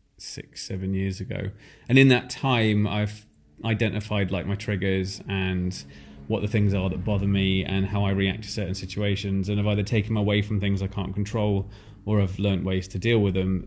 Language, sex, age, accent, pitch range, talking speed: English, male, 20-39, British, 100-105 Hz, 200 wpm